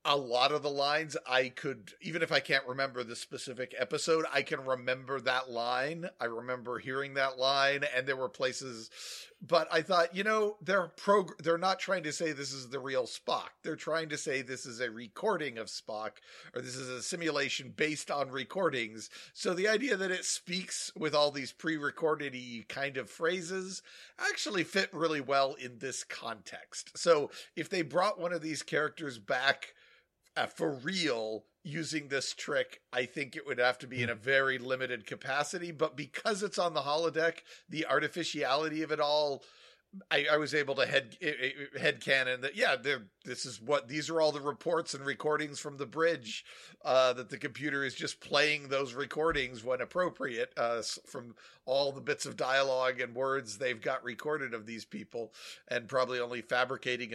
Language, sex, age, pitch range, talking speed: English, male, 50-69, 130-165 Hz, 185 wpm